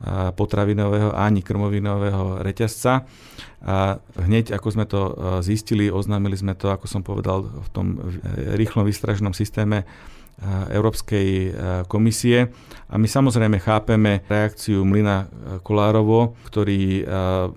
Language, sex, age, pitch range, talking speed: Slovak, male, 40-59, 95-105 Hz, 105 wpm